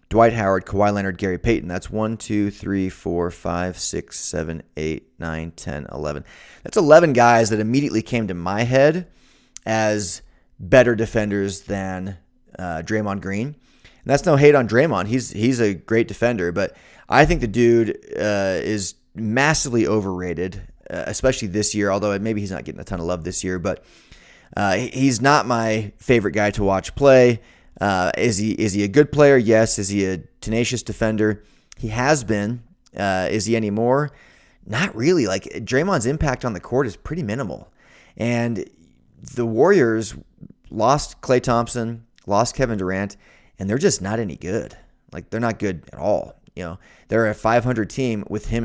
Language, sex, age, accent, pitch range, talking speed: English, male, 30-49, American, 95-120 Hz, 170 wpm